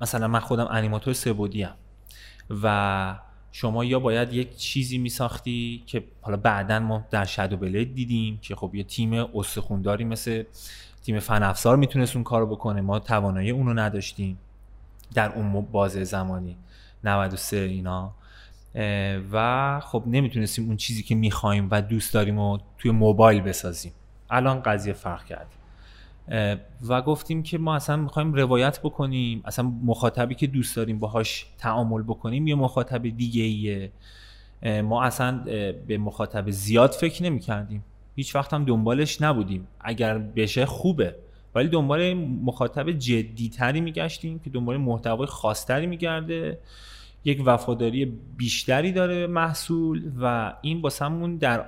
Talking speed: 135 wpm